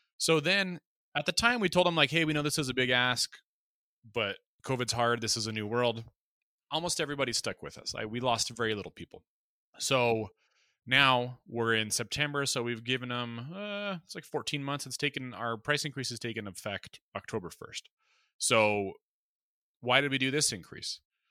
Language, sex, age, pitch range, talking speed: English, male, 30-49, 110-140 Hz, 190 wpm